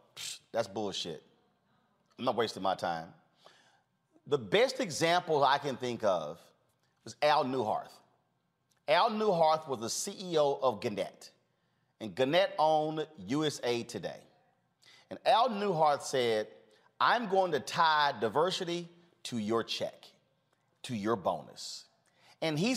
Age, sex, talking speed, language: 40-59, male, 125 wpm, English